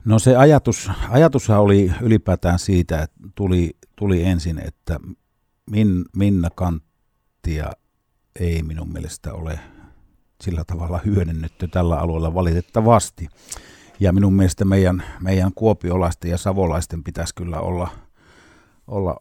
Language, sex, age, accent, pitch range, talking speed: Finnish, male, 50-69, native, 85-100 Hz, 115 wpm